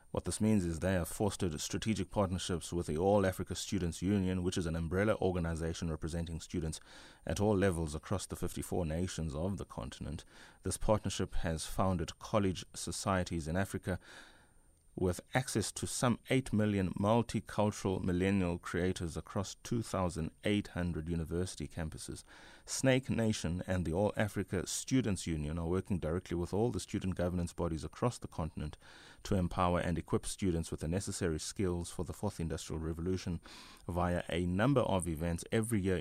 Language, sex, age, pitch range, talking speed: English, male, 30-49, 85-100 Hz, 155 wpm